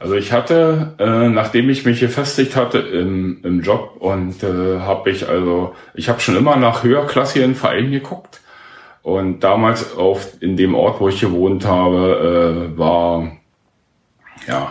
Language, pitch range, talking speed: German, 90-120 Hz, 155 wpm